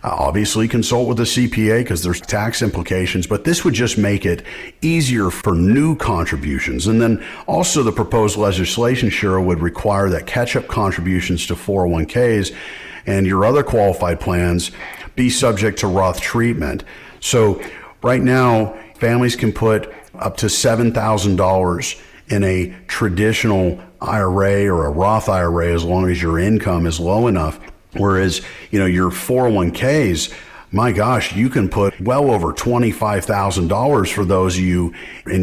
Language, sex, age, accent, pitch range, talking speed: English, male, 50-69, American, 95-120 Hz, 150 wpm